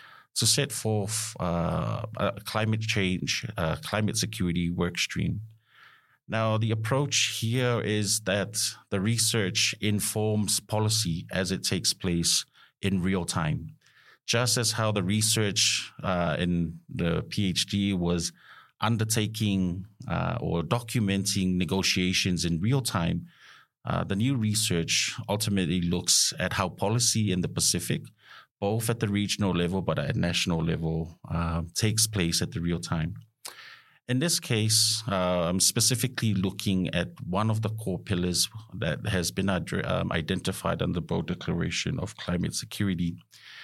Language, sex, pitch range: English, male, 90-115 Hz